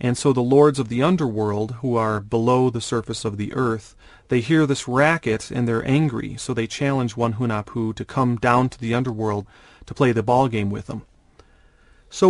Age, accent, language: 40-59, American, English